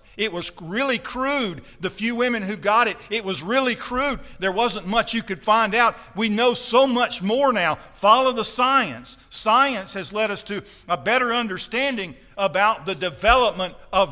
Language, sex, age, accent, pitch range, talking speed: English, male, 50-69, American, 165-240 Hz, 180 wpm